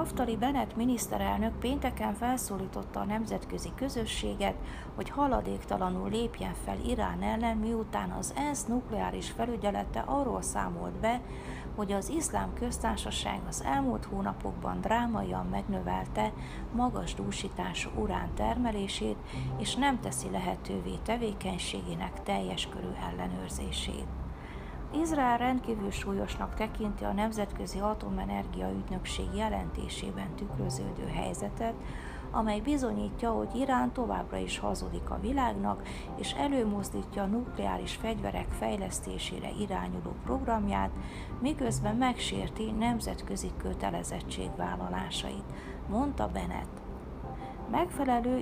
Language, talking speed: Hungarian, 95 wpm